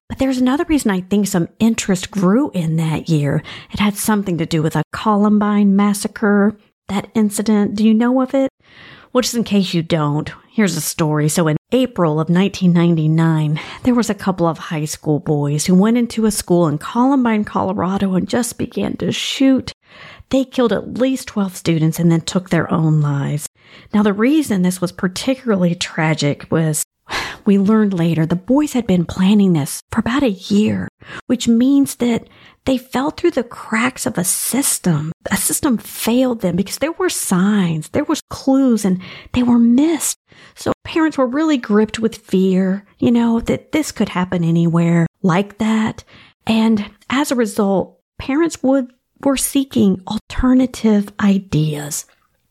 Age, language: 40-59, English